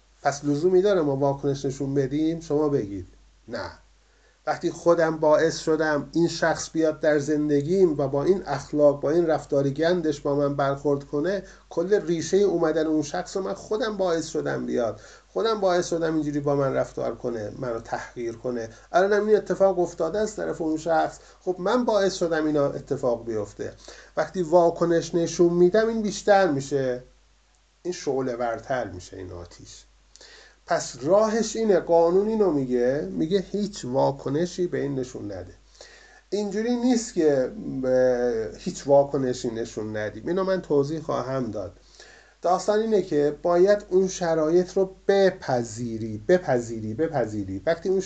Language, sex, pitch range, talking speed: Persian, male, 135-180 Hz, 145 wpm